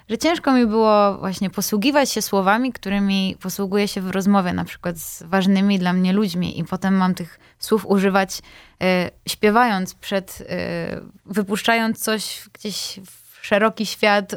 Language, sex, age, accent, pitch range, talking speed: Polish, female, 20-39, native, 190-220 Hz, 145 wpm